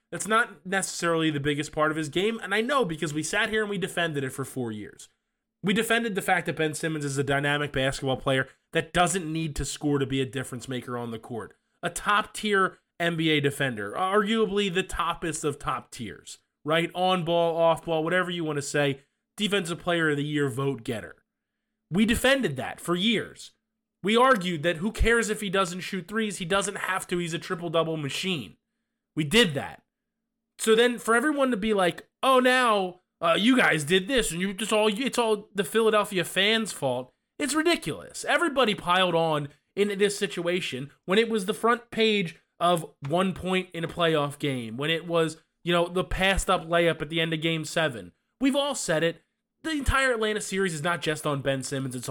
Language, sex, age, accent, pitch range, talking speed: English, male, 20-39, American, 155-215 Hz, 200 wpm